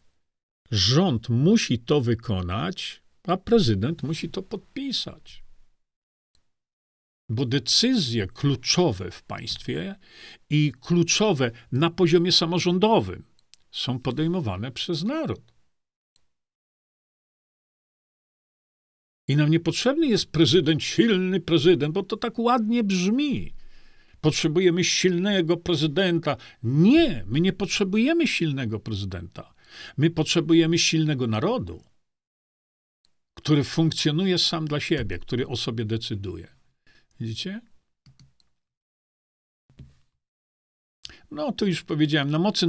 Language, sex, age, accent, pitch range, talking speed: Polish, male, 50-69, native, 125-195 Hz, 90 wpm